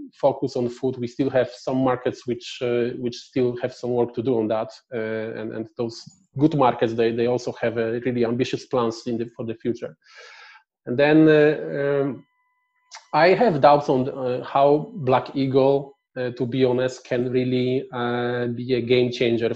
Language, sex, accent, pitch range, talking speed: Czech, male, Polish, 120-135 Hz, 185 wpm